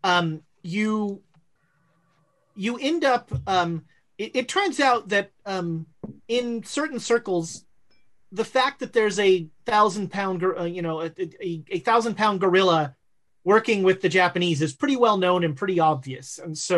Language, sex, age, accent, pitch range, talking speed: English, male, 30-49, American, 160-205 Hz, 155 wpm